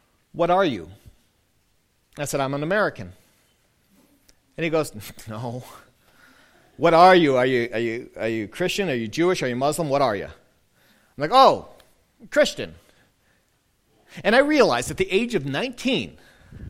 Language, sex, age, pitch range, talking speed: English, male, 40-59, 130-195 Hz, 155 wpm